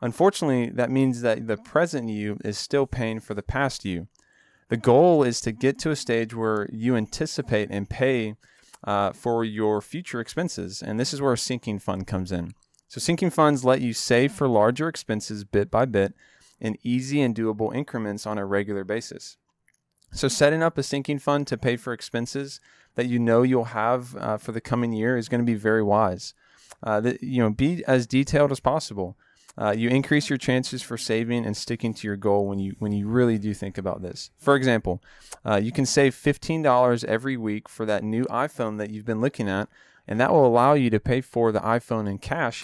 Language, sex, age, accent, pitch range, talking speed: English, male, 20-39, American, 105-130 Hz, 205 wpm